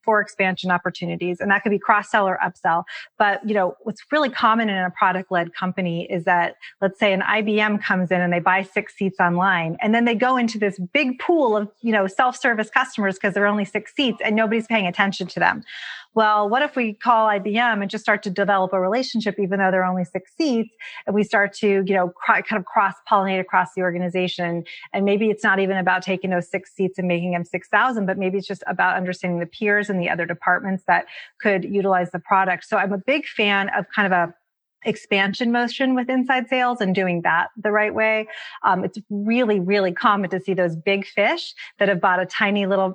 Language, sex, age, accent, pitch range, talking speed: English, female, 30-49, American, 185-215 Hz, 220 wpm